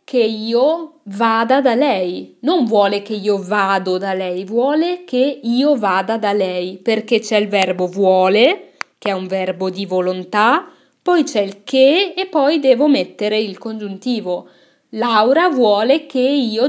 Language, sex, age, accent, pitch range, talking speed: Italian, female, 20-39, native, 195-270 Hz, 155 wpm